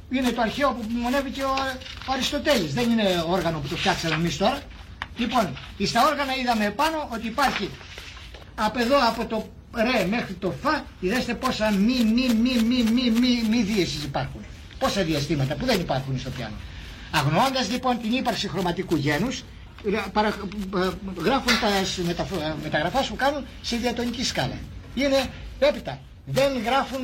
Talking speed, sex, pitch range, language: 155 wpm, male, 165-250 Hz, Greek